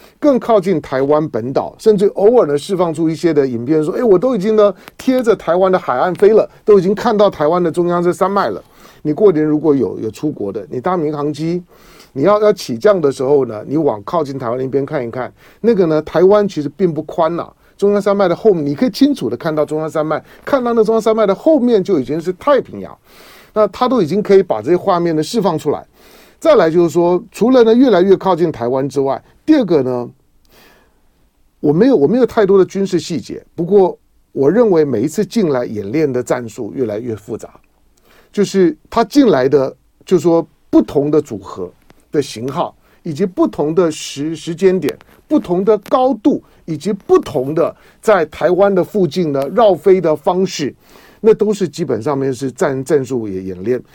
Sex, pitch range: male, 150-210 Hz